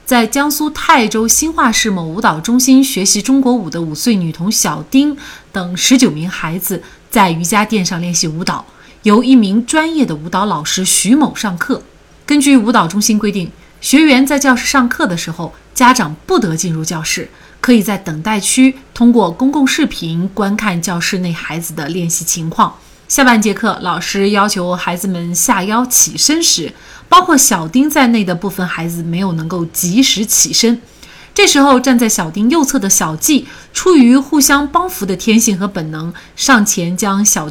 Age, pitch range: 30-49, 180-260 Hz